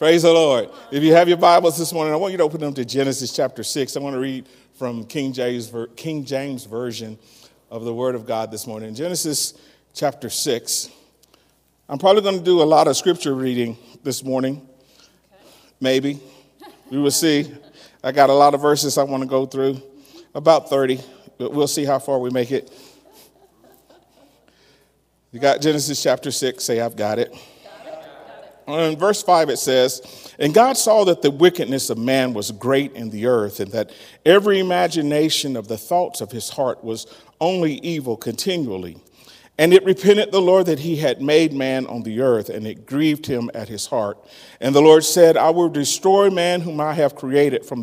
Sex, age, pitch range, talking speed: male, 40-59, 125-160 Hz, 190 wpm